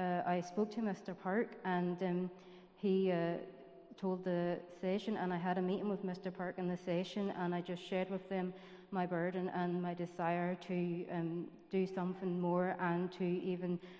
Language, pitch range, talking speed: English, 175-190 Hz, 185 wpm